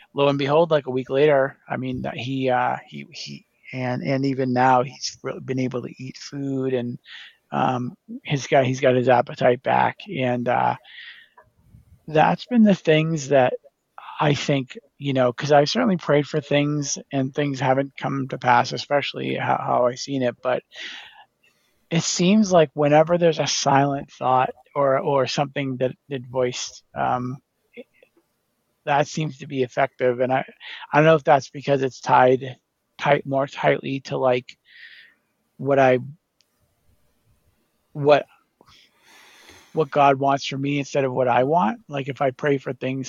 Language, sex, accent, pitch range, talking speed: English, male, American, 125-145 Hz, 165 wpm